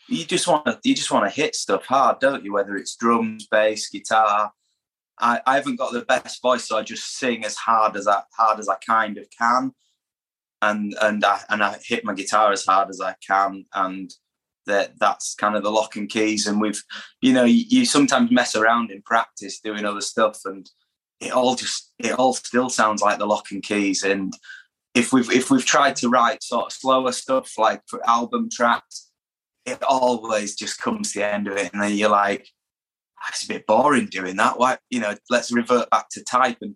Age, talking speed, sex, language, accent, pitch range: 20-39, 215 wpm, male, English, British, 105-125 Hz